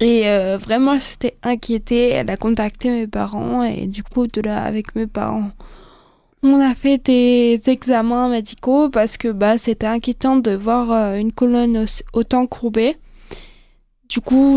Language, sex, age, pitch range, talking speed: French, female, 20-39, 220-255 Hz, 160 wpm